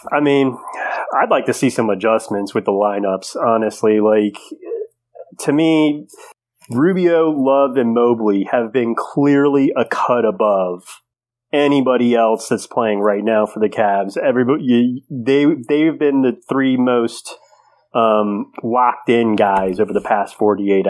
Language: English